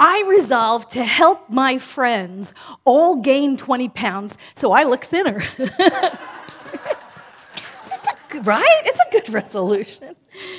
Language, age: English, 40-59